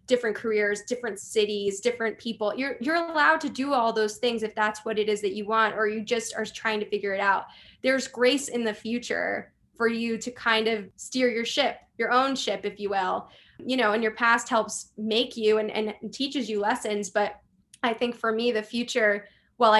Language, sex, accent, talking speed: English, female, American, 215 wpm